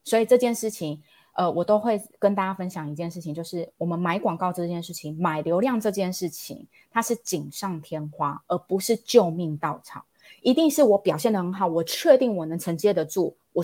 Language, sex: Chinese, female